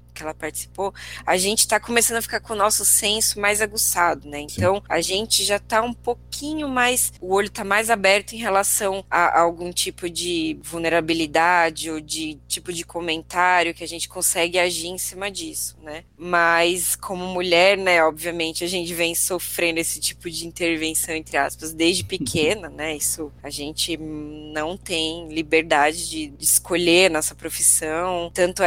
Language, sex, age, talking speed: Portuguese, female, 20-39, 170 wpm